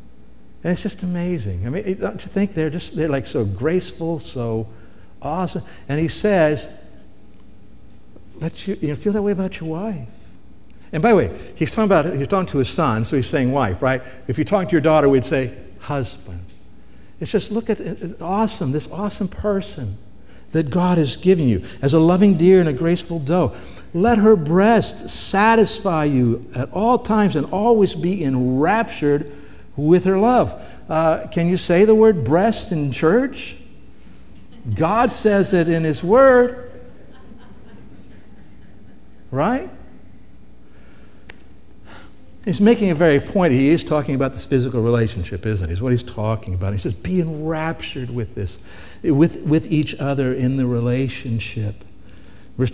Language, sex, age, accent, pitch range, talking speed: English, male, 60-79, American, 120-180 Hz, 160 wpm